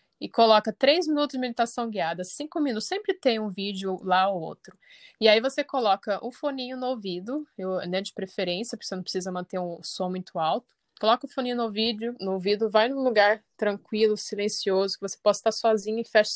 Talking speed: 210 wpm